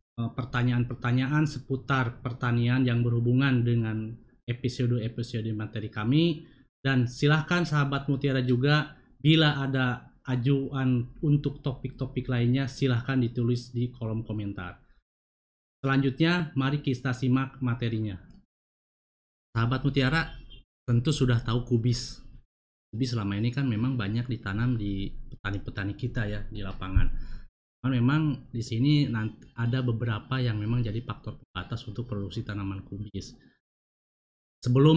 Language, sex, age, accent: Indonesian, male, 20-39, native